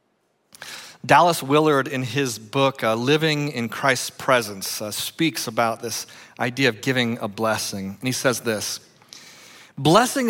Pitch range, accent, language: 115-160 Hz, American, English